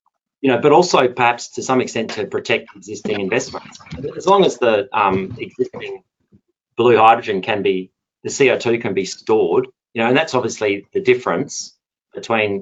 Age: 30-49